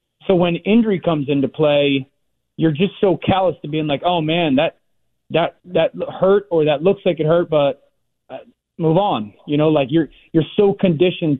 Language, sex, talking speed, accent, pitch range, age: English, male, 185 wpm, American, 140-170 Hz, 30-49